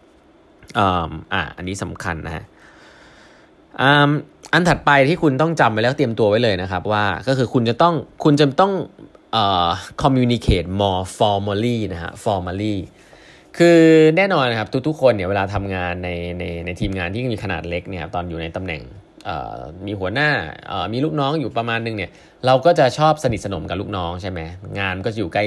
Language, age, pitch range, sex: Thai, 20-39, 95-135 Hz, male